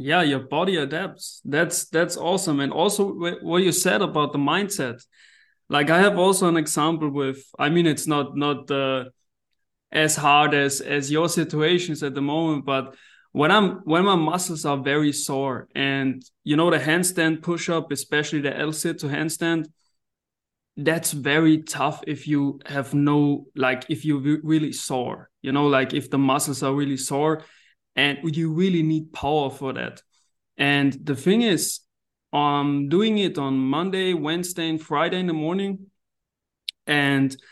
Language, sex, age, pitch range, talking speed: English, male, 20-39, 140-170 Hz, 170 wpm